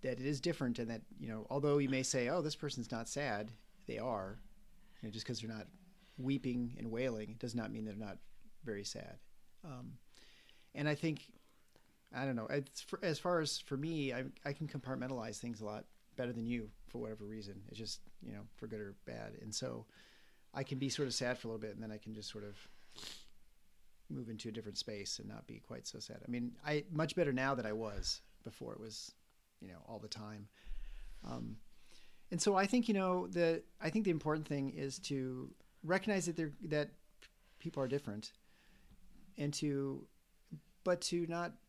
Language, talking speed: English, 210 wpm